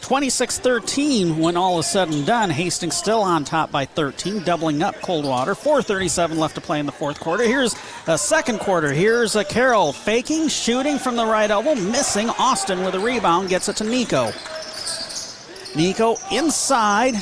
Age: 40-59